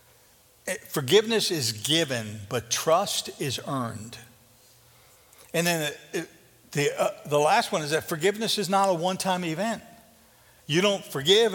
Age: 60-79